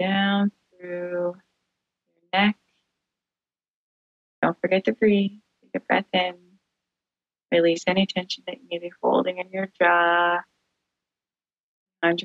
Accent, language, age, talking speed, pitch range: American, English, 20-39, 120 wpm, 170-190 Hz